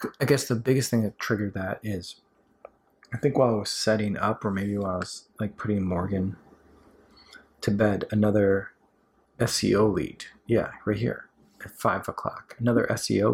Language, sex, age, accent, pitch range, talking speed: English, male, 30-49, American, 100-125 Hz, 165 wpm